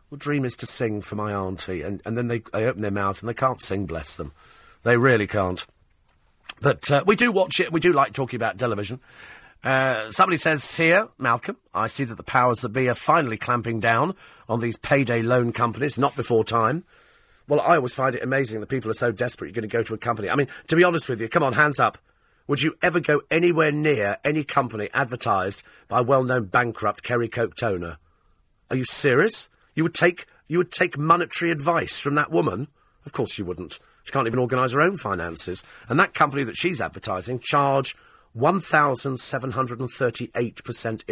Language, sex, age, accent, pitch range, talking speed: English, male, 40-59, British, 115-150 Hz, 205 wpm